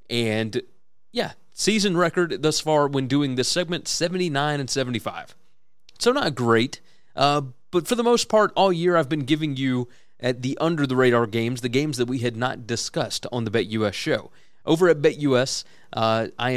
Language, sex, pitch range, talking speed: English, male, 120-160 Hz, 175 wpm